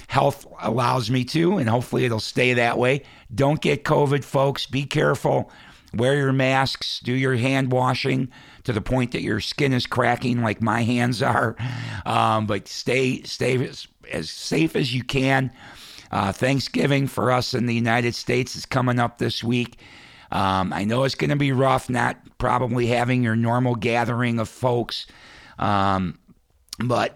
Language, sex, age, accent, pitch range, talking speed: English, male, 50-69, American, 105-125 Hz, 170 wpm